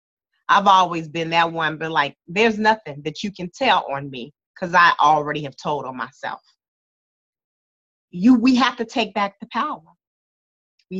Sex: female